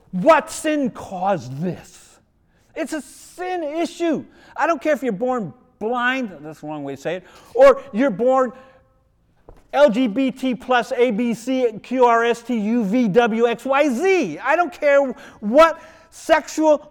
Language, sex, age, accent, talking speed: English, male, 40-59, American, 125 wpm